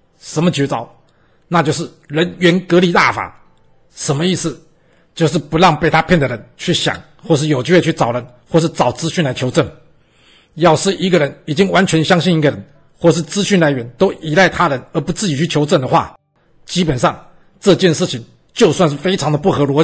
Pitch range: 145-175 Hz